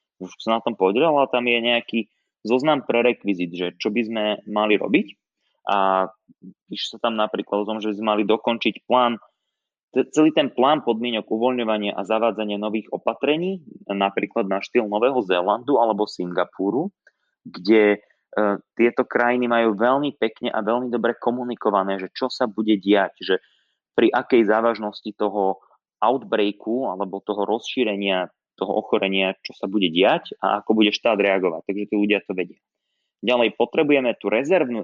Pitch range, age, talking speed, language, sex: 100-120 Hz, 20-39, 155 wpm, Slovak, male